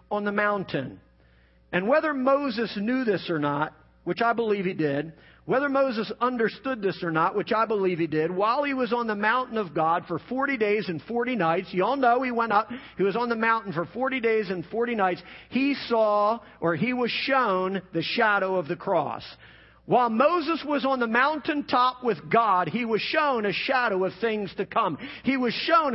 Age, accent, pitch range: 50-69, American, 205-275 Hz